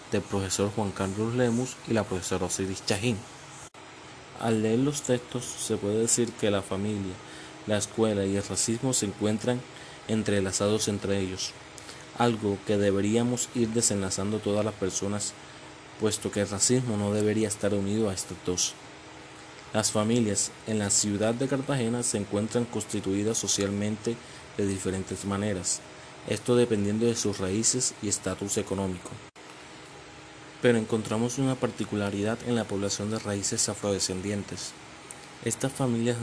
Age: 20-39